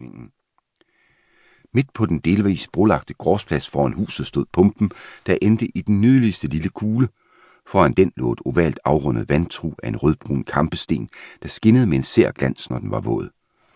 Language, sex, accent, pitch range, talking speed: Danish, male, native, 75-105 Hz, 165 wpm